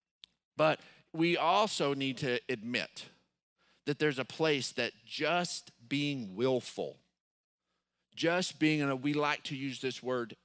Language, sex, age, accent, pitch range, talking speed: English, male, 40-59, American, 110-150 Hz, 140 wpm